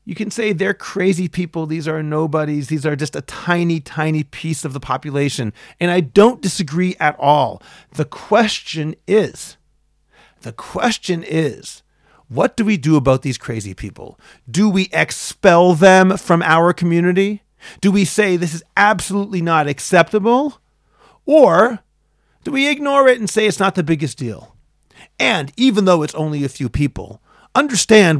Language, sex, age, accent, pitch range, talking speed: English, male, 40-59, American, 145-190 Hz, 160 wpm